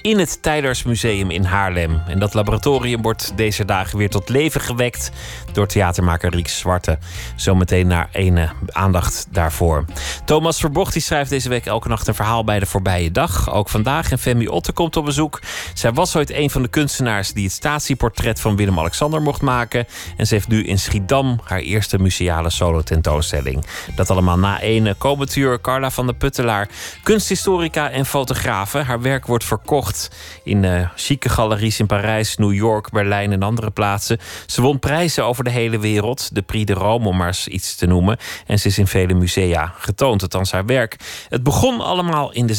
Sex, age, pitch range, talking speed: male, 30-49, 95-130 Hz, 185 wpm